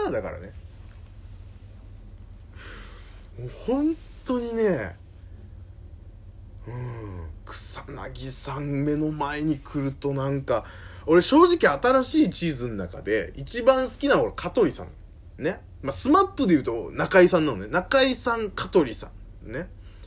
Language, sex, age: Japanese, male, 20-39